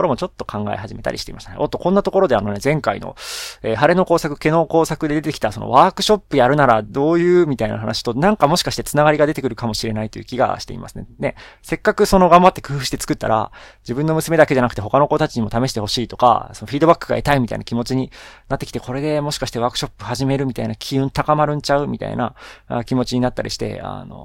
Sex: male